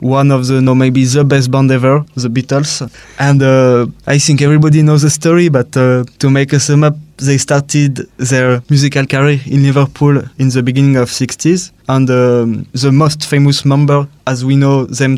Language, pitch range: English, 125-145 Hz